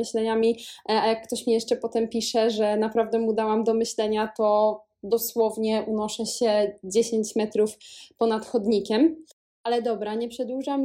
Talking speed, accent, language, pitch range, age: 145 wpm, native, Polish, 215-245 Hz, 20-39